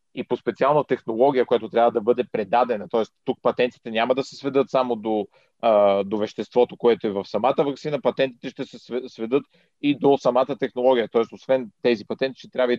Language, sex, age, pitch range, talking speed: Bulgarian, male, 40-59, 115-135 Hz, 190 wpm